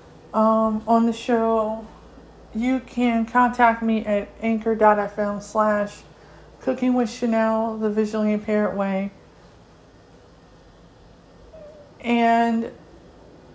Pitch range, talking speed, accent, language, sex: 210-235 Hz, 75 wpm, American, English, female